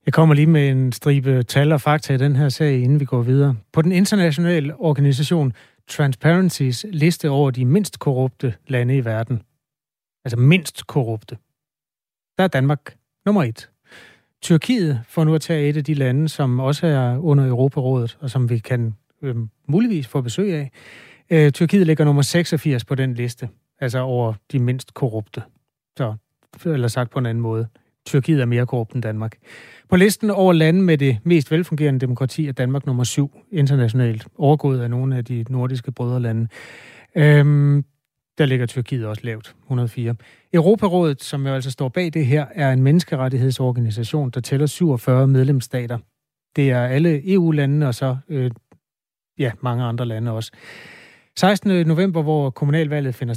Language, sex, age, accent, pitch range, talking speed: Danish, male, 30-49, native, 125-155 Hz, 165 wpm